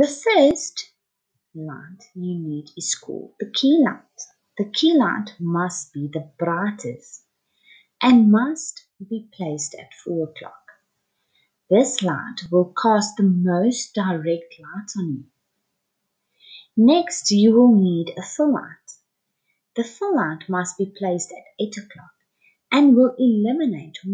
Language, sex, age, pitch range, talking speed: English, female, 30-49, 170-255 Hz, 130 wpm